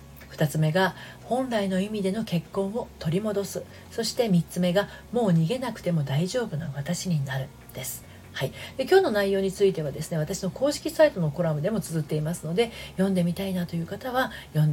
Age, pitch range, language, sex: 40-59, 145-195 Hz, Japanese, female